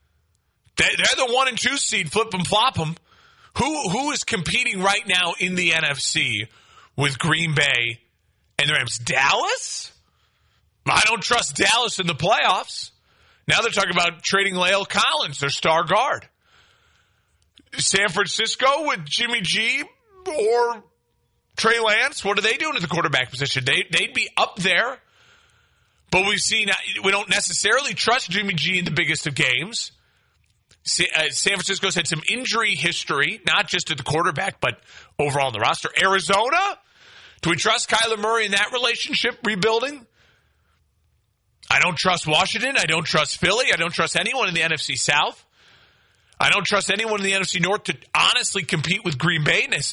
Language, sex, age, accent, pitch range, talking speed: English, male, 30-49, American, 150-210 Hz, 160 wpm